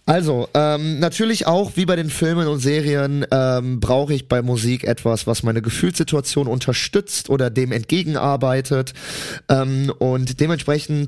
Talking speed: 140 wpm